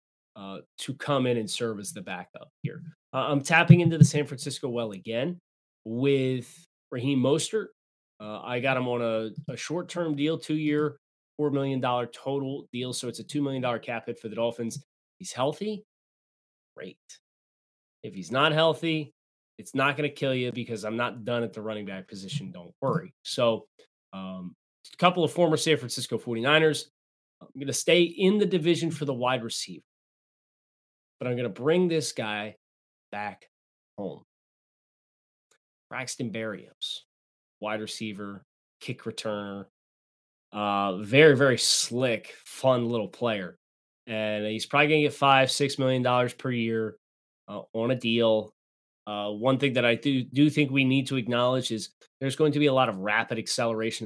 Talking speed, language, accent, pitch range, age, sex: 165 wpm, English, American, 110-145 Hz, 20-39, male